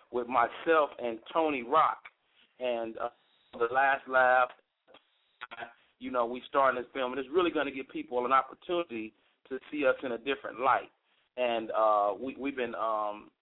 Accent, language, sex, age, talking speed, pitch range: American, English, male, 40-59, 170 wpm, 120-140 Hz